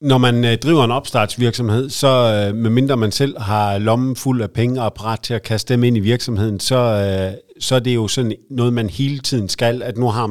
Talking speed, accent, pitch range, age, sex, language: 215 wpm, native, 105-130 Hz, 50-69, male, Danish